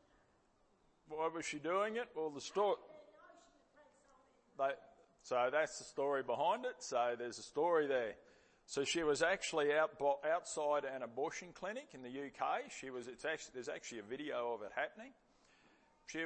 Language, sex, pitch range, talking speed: English, male, 130-165 Hz, 160 wpm